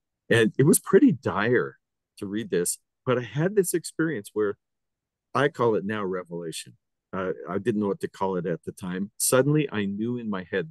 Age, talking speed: 50-69, 200 wpm